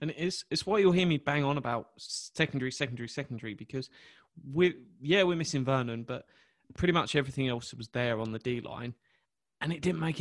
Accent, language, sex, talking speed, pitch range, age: British, English, male, 200 wpm, 120-150 Hz, 20-39